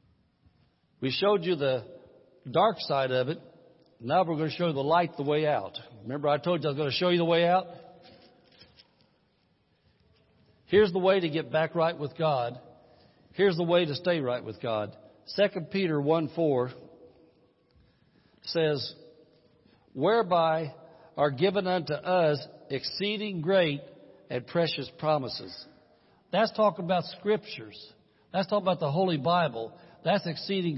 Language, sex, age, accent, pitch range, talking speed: English, male, 60-79, American, 145-185 Hz, 150 wpm